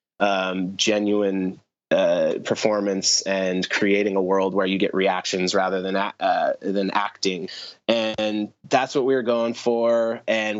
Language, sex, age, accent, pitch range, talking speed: English, male, 20-39, American, 100-120 Hz, 145 wpm